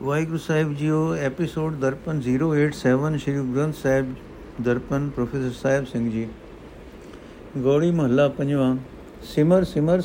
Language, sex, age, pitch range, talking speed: Punjabi, male, 60-79, 125-155 Hz, 120 wpm